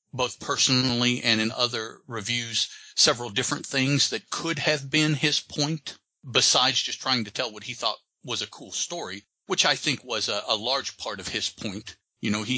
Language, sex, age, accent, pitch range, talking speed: English, male, 40-59, American, 105-135 Hz, 195 wpm